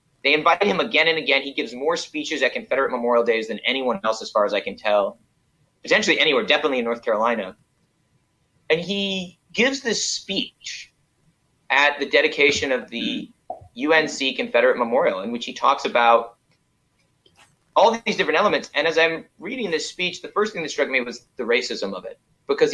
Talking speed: 185 wpm